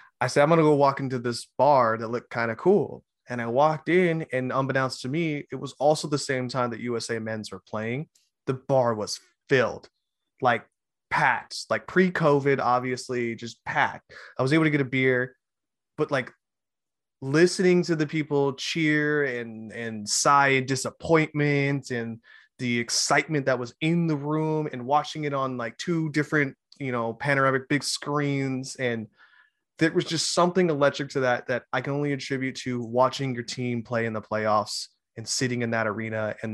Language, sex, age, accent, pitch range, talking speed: English, male, 20-39, American, 120-145 Hz, 180 wpm